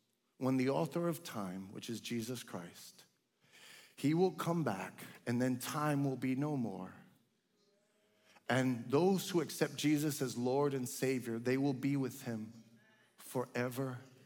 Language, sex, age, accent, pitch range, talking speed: English, male, 40-59, American, 125-170 Hz, 145 wpm